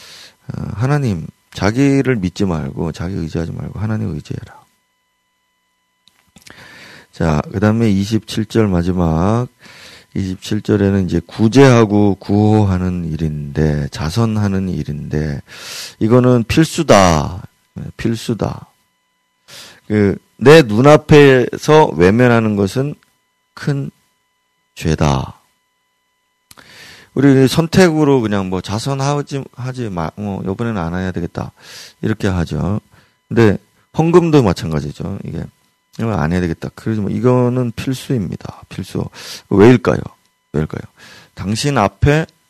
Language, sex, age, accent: Korean, male, 40-59, native